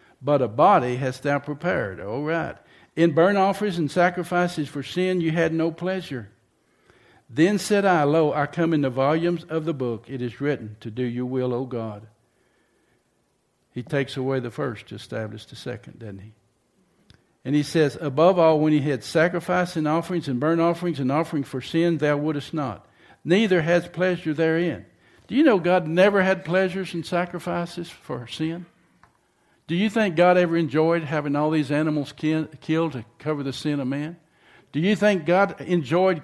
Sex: male